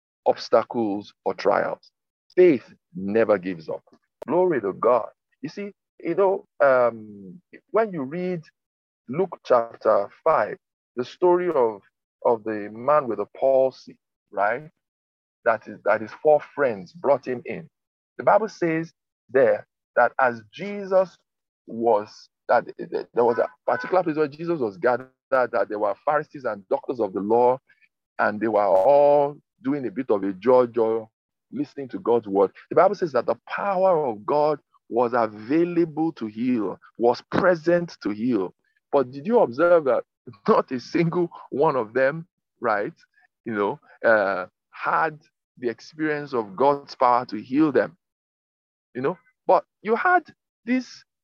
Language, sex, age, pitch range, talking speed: English, male, 50-69, 120-185 Hz, 150 wpm